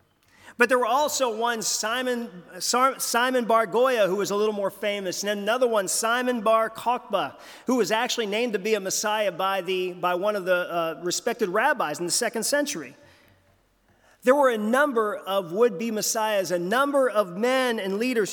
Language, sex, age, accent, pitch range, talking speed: English, male, 40-59, American, 185-240 Hz, 175 wpm